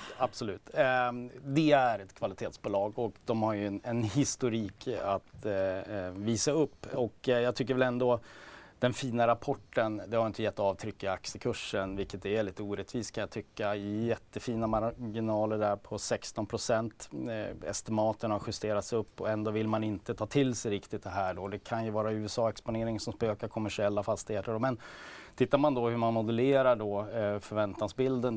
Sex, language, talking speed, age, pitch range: male, Swedish, 165 wpm, 30-49, 100-115 Hz